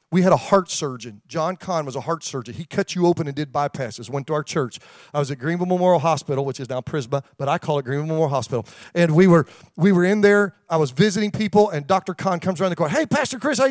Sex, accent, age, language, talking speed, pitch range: male, American, 40-59, English, 265 wpm, 155-230 Hz